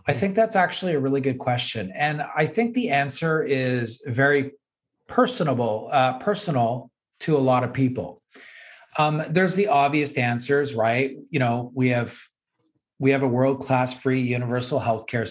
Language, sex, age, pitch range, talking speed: English, male, 30-49, 120-140 Hz, 155 wpm